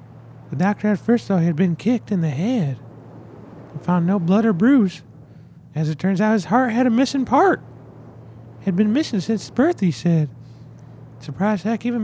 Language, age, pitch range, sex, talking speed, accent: English, 30-49, 145-230 Hz, male, 205 wpm, American